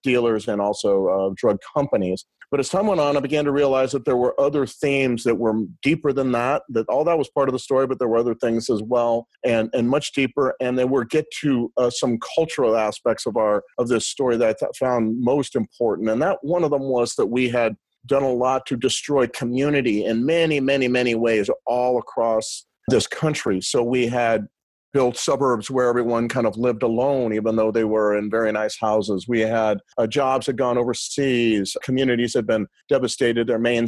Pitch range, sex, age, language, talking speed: 115-145 Hz, male, 40-59, English, 215 wpm